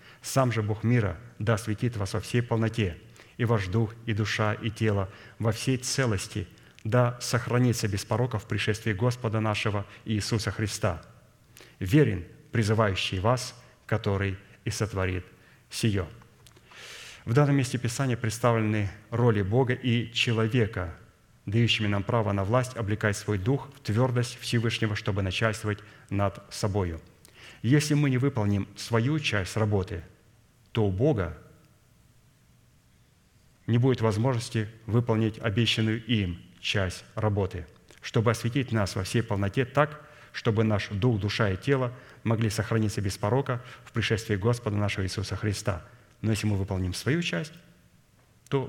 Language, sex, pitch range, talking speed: Russian, male, 105-120 Hz, 135 wpm